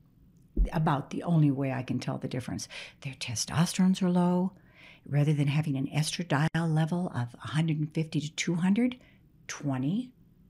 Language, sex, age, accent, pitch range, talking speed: Hebrew, female, 60-79, American, 140-170 Hz, 135 wpm